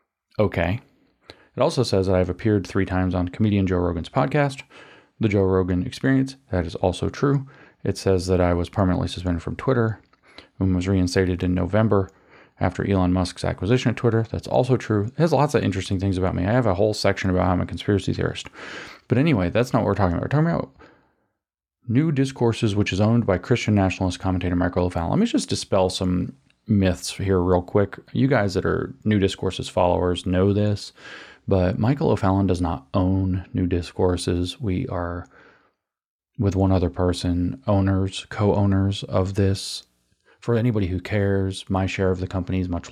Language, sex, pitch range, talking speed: English, male, 90-105 Hz, 185 wpm